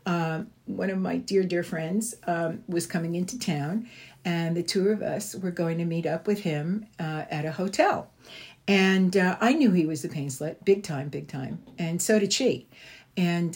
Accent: American